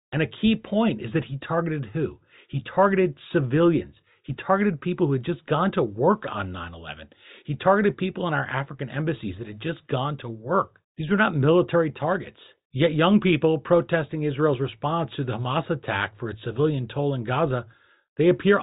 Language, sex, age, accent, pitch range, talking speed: English, male, 40-59, American, 125-170 Hz, 190 wpm